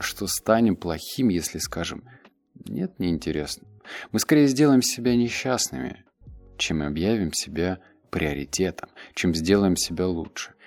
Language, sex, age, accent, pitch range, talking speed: Russian, male, 30-49, native, 80-115 Hz, 110 wpm